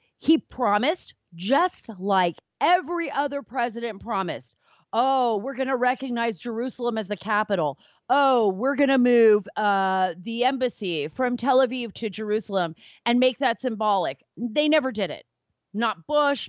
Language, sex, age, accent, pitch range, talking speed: English, female, 30-49, American, 205-280 Hz, 140 wpm